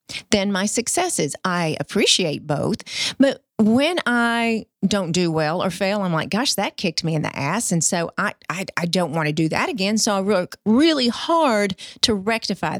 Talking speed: 190 wpm